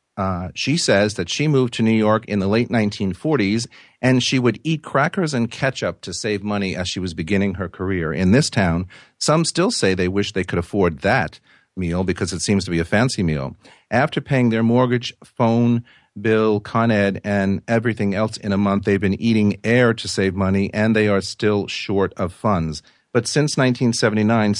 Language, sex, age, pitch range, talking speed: English, male, 40-59, 95-125 Hz, 200 wpm